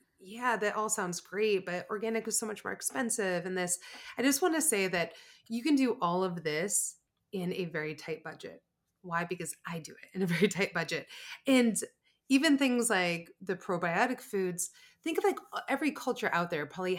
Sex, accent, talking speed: female, American, 200 wpm